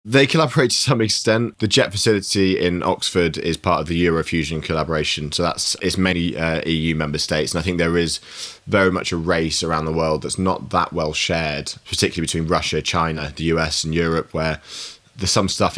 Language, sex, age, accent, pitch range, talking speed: English, male, 20-39, British, 80-95 Hz, 200 wpm